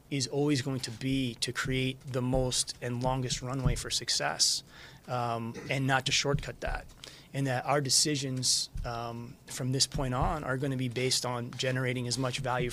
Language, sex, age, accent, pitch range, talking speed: English, male, 30-49, American, 120-140 Hz, 185 wpm